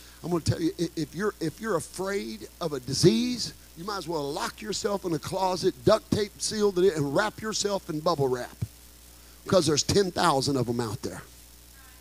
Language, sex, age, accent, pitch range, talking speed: English, male, 50-69, American, 155-200 Hz, 190 wpm